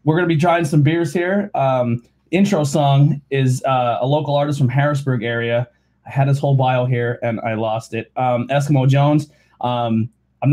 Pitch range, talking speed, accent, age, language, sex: 115-135 Hz, 195 wpm, American, 20-39, English, male